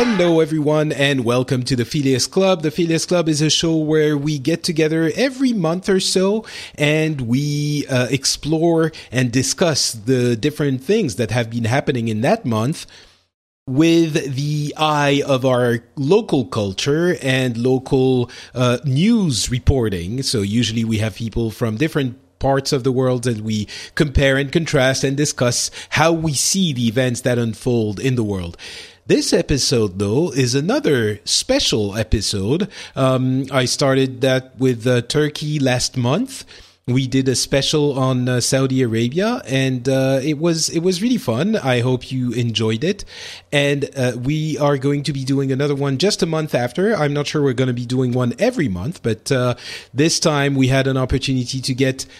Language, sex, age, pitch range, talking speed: English, male, 30-49, 125-155 Hz, 170 wpm